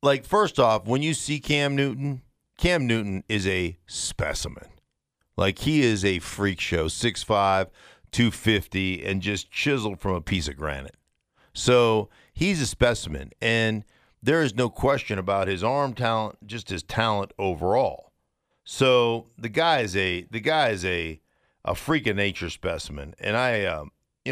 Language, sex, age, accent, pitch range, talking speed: English, male, 50-69, American, 95-135 Hz, 160 wpm